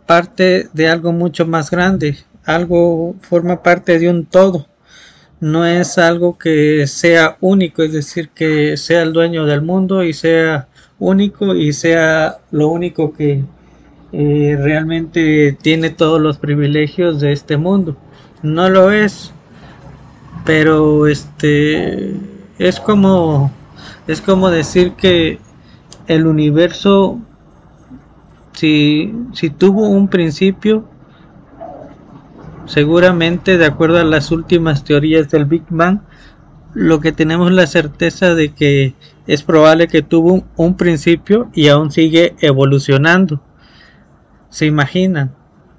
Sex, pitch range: male, 150-180 Hz